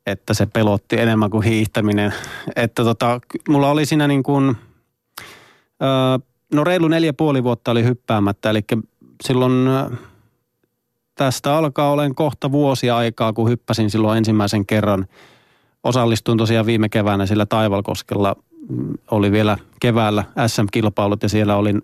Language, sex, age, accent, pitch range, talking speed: Finnish, male, 30-49, native, 110-130 Hz, 125 wpm